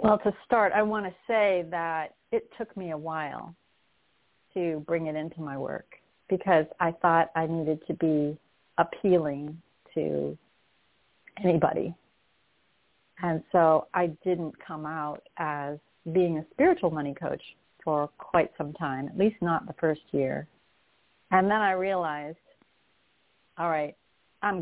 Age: 40-59